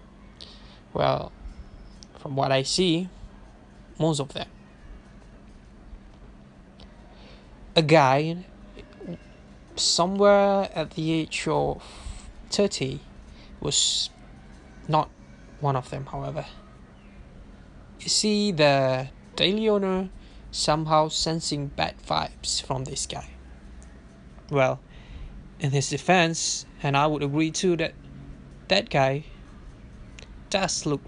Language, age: English, 20-39